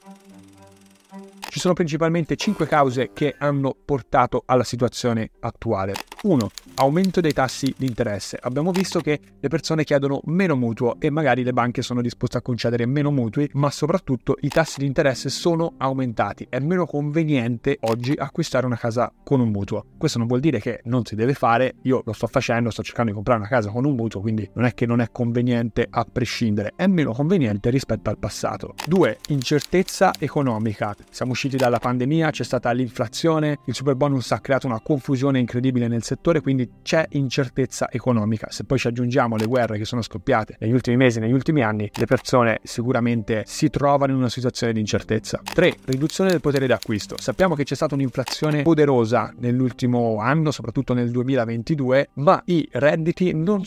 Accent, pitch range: native, 120-145 Hz